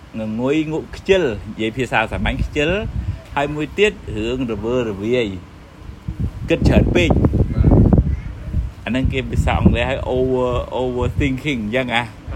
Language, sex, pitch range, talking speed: English, male, 110-155 Hz, 100 wpm